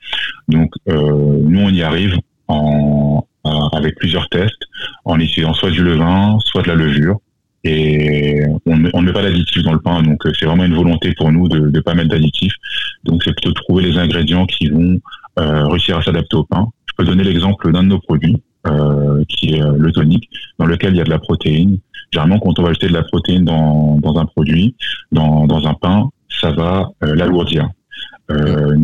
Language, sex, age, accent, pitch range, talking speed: French, male, 20-39, French, 75-90 Hz, 205 wpm